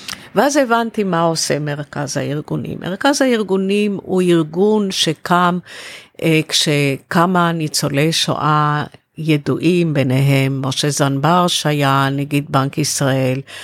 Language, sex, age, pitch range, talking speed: Hebrew, female, 50-69, 145-175 Hz, 95 wpm